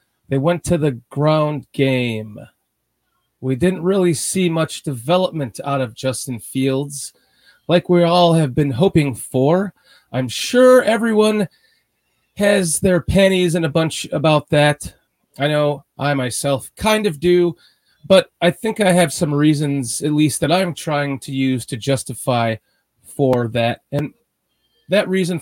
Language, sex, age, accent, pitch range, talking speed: English, male, 30-49, American, 135-175 Hz, 145 wpm